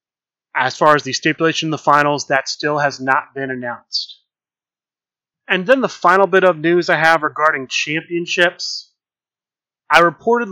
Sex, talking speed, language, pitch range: male, 155 wpm, English, 140-170 Hz